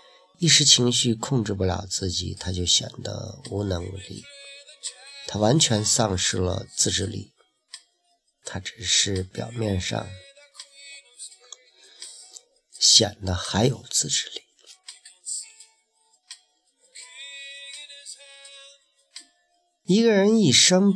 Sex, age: male, 50-69